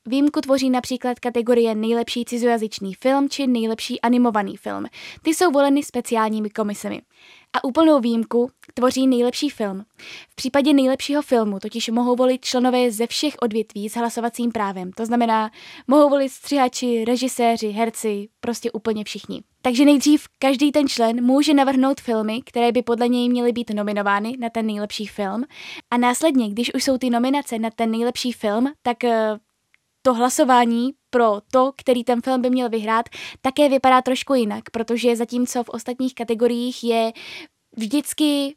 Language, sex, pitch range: Czech, female, 230-265 Hz